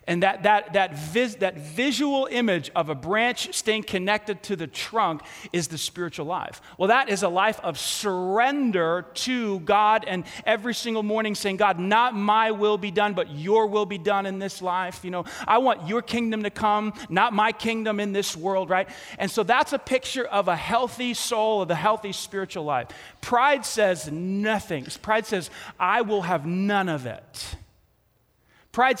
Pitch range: 175-225 Hz